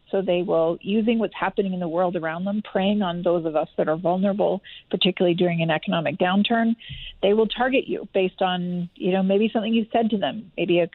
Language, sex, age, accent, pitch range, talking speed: English, female, 40-59, American, 185-220 Hz, 220 wpm